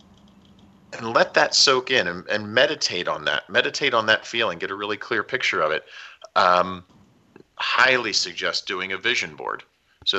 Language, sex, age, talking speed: English, male, 40-59, 170 wpm